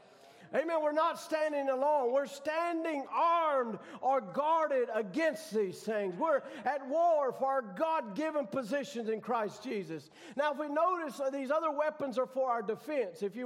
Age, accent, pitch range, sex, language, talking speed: 50-69, American, 245-305 Hz, male, English, 165 wpm